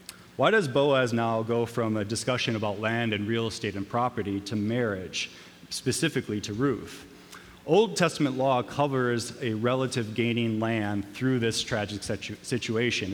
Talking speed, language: 145 wpm, English